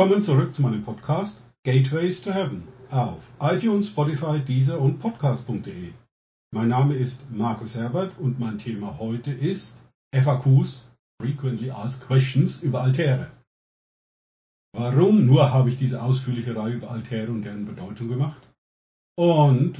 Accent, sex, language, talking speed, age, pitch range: German, male, German, 135 wpm, 50-69, 115-145 Hz